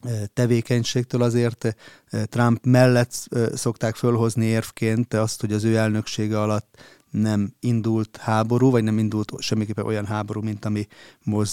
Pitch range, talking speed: 105-120 Hz, 130 wpm